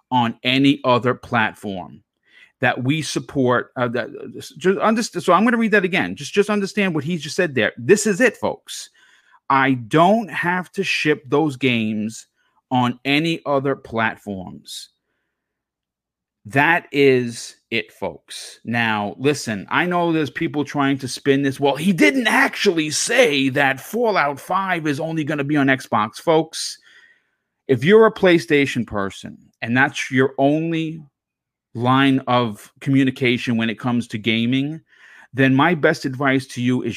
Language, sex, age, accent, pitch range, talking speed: English, male, 40-59, American, 125-160 Hz, 155 wpm